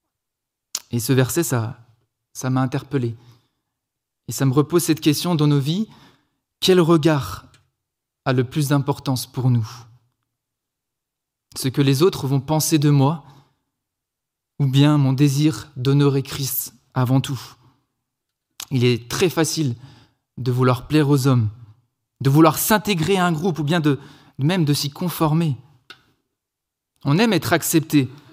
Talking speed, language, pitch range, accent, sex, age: 140 wpm, French, 125-155 Hz, French, male, 20-39